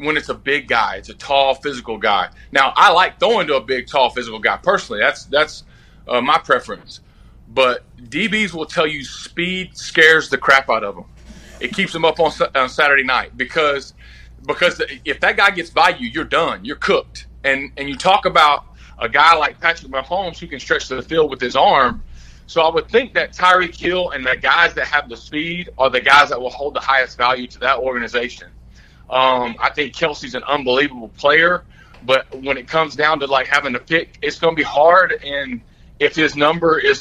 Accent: American